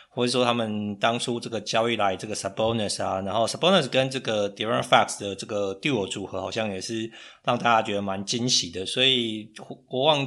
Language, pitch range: Chinese, 105-130 Hz